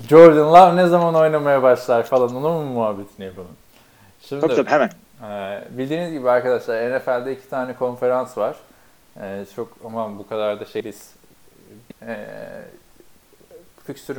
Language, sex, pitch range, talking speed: Turkish, male, 110-135 Hz, 120 wpm